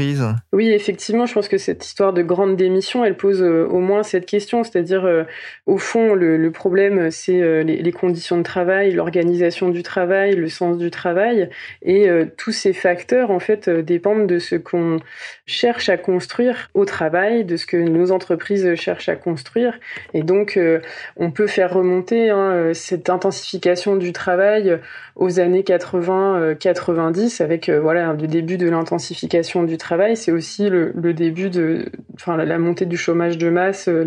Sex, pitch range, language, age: female, 170-195 Hz, French, 20-39